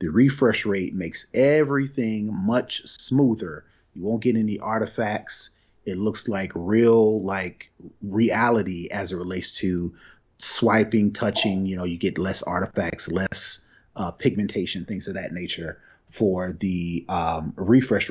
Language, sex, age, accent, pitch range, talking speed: English, male, 30-49, American, 95-115 Hz, 135 wpm